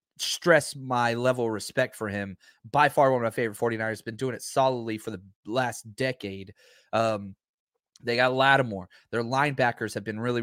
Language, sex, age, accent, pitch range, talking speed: English, male, 30-49, American, 115-190 Hz, 180 wpm